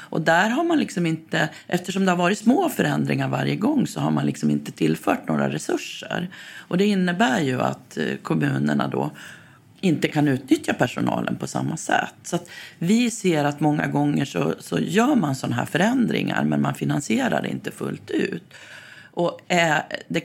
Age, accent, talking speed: 40-59, native, 175 wpm